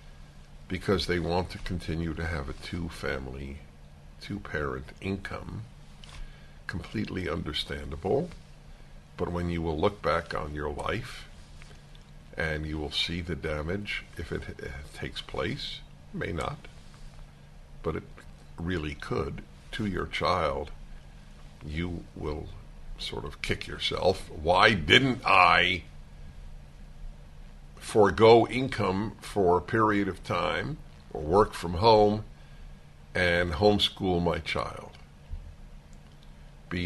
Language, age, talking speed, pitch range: English, 60-79, 105 wpm, 70-90 Hz